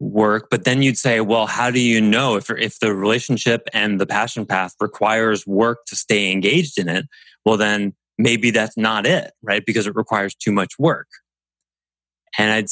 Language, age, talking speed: English, 20-39, 190 wpm